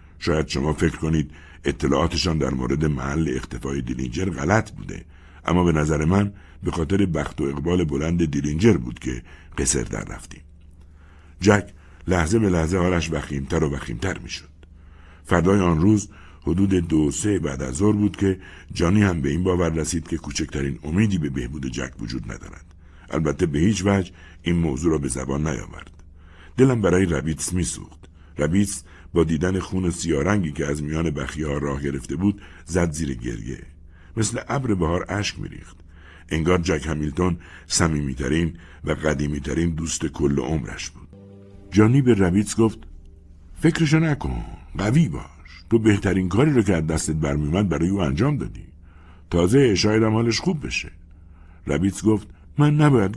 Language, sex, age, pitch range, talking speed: Persian, male, 60-79, 75-95 Hz, 155 wpm